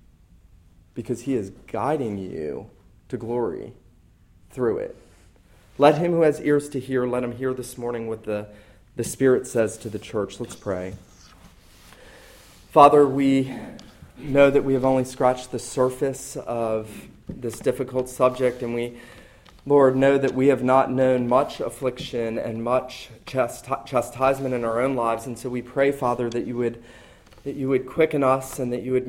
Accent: American